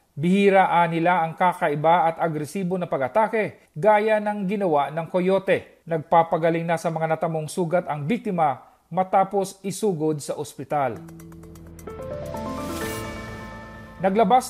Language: Filipino